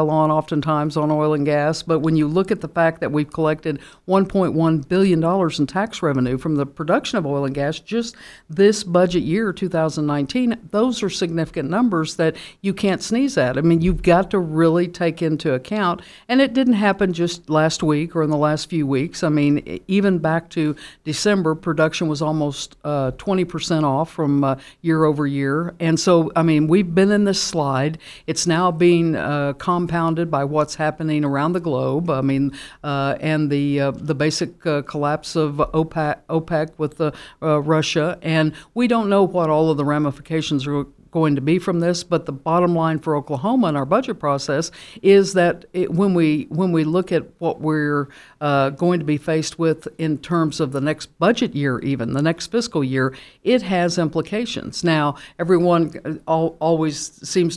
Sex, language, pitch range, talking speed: female, English, 150-175 Hz, 185 wpm